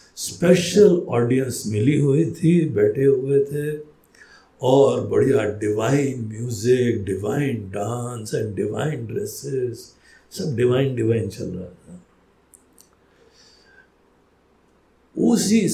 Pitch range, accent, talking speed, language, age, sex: 115-175 Hz, native, 90 wpm, Hindi, 60-79, male